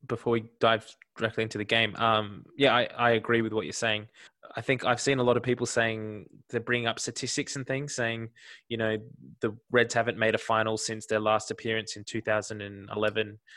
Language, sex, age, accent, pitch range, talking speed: English, male, 20-39, Australian, 110-120 Hz, 205 wpm